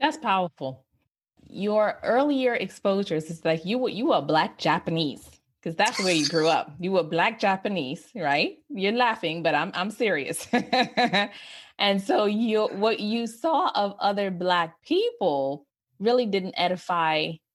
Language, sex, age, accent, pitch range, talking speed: English, female, 20-39, American, 155-210 Hz, 145 wpm